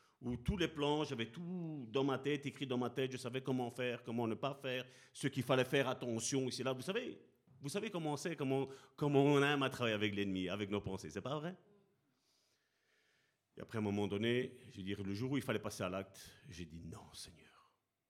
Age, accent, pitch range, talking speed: 40-59, French, 105-145 Hz, 230 wpm